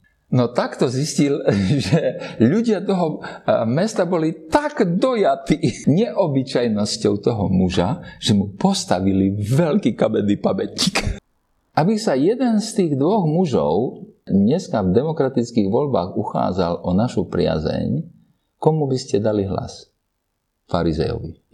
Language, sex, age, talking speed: Slovak, male, 50-69, 110 wpm